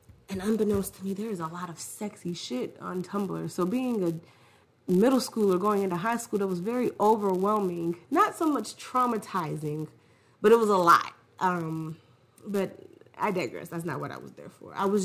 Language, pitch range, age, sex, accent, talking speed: English, 155-225 Hz, 30-49, female, American, 190 wpm